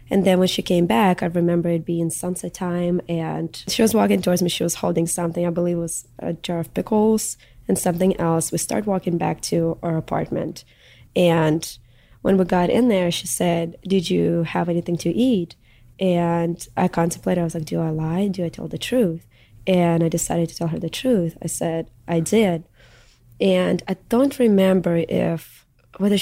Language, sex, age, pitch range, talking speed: English, female, 20-39, 165-185 Hz, 195 wpm